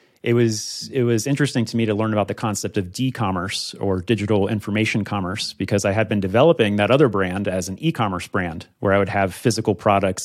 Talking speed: 210 wpm